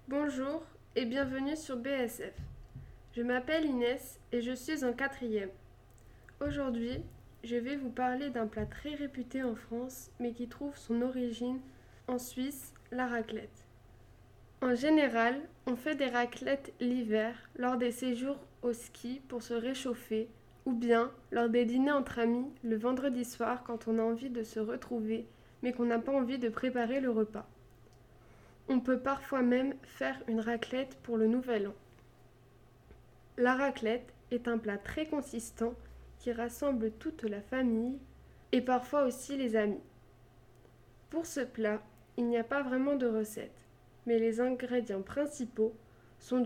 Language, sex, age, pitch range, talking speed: French, female, 20-39, 220-260 Hz, 150 wpm